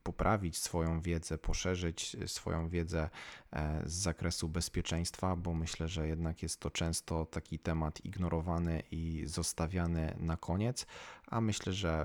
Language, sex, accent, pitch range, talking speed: Polish, male, native, 80-90 Hz, 130 wpm